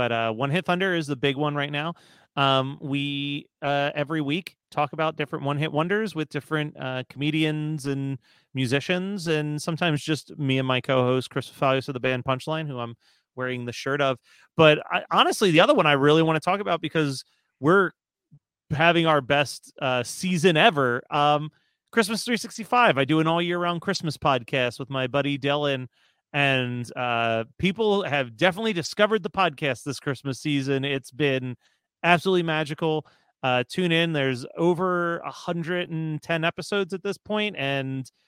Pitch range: 140-175 Hz